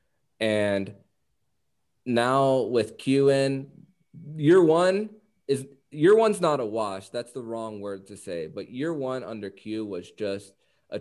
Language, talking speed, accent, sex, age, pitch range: English, 145 wpm, American, male, 20-39, 95-120 Hz